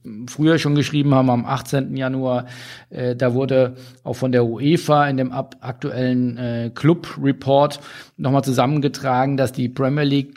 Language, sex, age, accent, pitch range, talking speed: German, male, 40-59, German, 125-145 Hz, 145 wpm